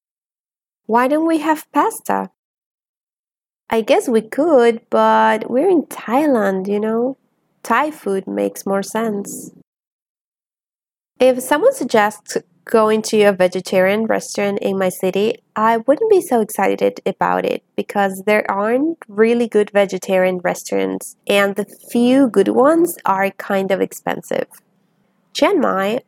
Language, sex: English, female